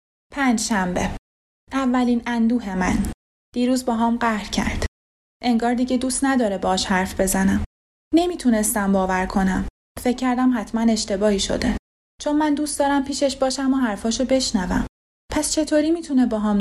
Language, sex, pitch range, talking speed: Persian, female, 205-255 Hz, 135 wpm